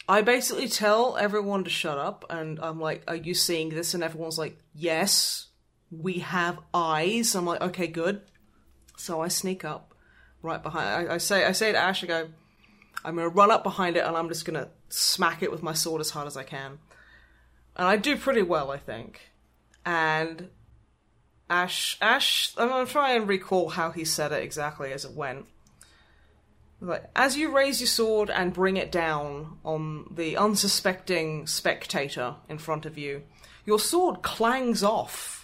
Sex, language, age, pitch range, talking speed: female, English, 20-39, 160-205 Hz, 180 wpm